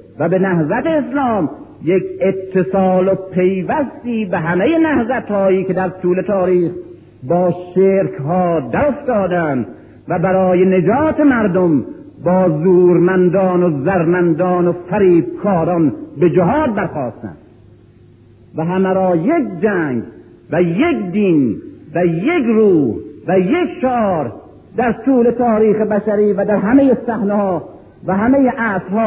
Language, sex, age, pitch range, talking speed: Persian, male, 50-69, 170-205 Hz, 115 wpm